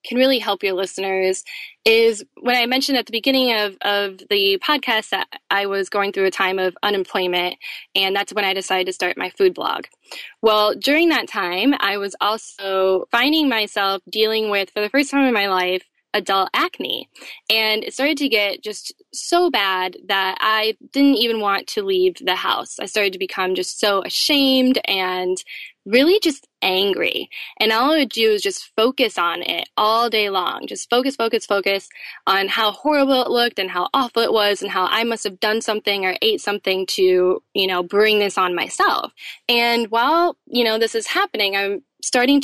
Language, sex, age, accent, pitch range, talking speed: English, female, 10-29, American, 195-260 Hz, 190 wpm